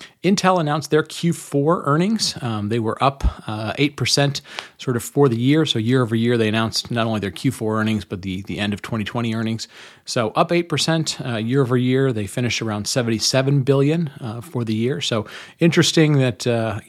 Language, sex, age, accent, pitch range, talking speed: English, male, 40-59, American, 105-135 Hz, 200 wpm